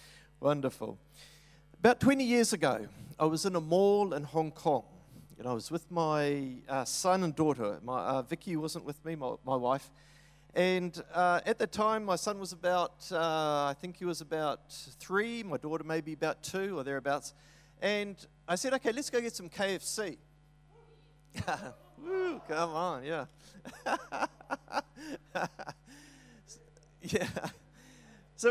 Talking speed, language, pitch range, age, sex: 145 wpm, English, 150-195 Hz, 40-59, male